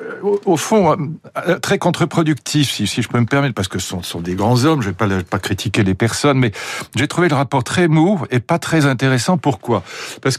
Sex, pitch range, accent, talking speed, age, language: male, 115-155 Hz, French, 210 wpm, 60-79, French